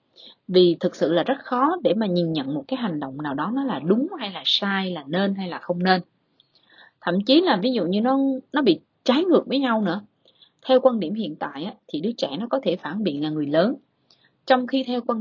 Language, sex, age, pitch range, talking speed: Vietnamese, female, 20-39, 175-260 Hz, 250 wpm